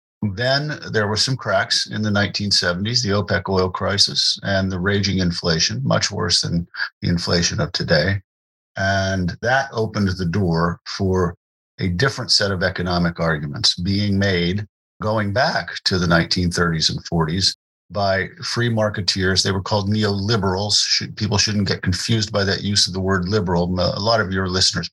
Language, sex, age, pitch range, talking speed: English, male, 50-69, 85-100 Hz, 160 wpm